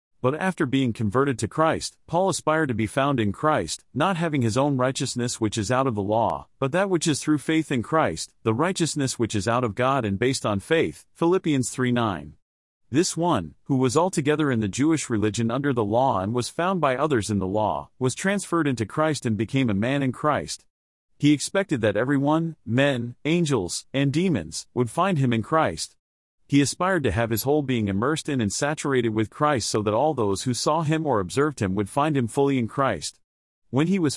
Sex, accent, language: male, American, English